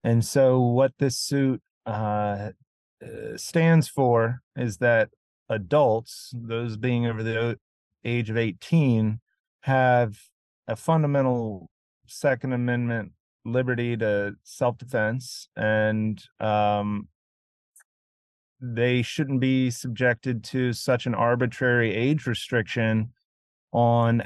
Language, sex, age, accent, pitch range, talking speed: English, male, 30-49, American, 105-125 Hz, 95 wpm